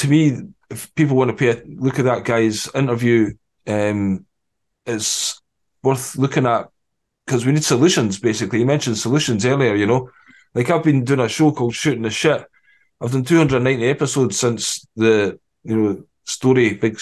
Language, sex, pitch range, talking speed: English, male, 115-140 Hz, 175 wpm